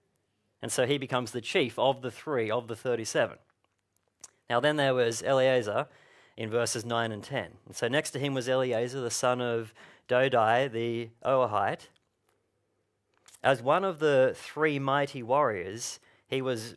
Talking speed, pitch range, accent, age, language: 155 wpm, 115-145 Hz, Australian, 40-59, English